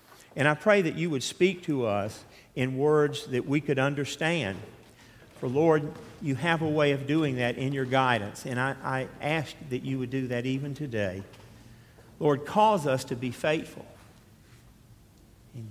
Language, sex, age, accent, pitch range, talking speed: English, male, 50-69, American, 110-130 Hz, 170 wpm